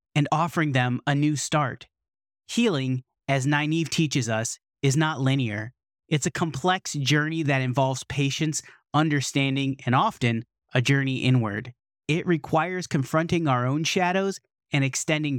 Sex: male